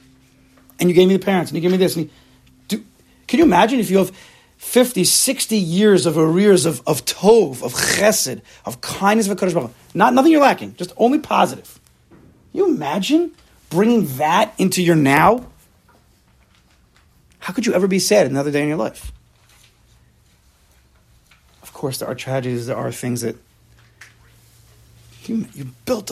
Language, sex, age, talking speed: English, male, 30-49, 165 wpm